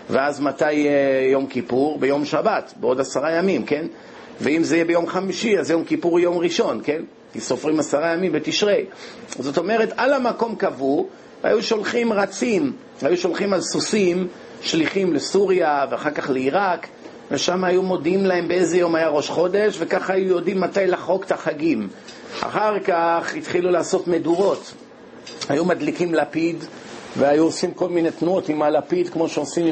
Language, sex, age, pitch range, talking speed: Hebrew, male, 50-69, 155-195 Hz, 160 wpm